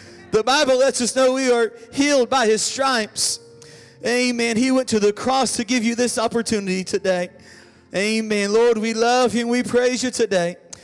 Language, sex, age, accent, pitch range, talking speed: English, male, 40-59, American, 180-230 Hz, 185 wpm